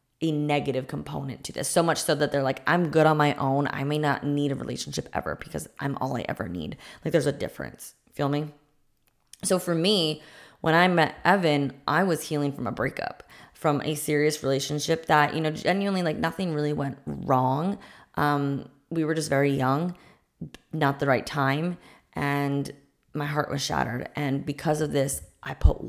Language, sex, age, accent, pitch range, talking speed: English, female, 20-39, American, 140-155 Hz, 190 wpm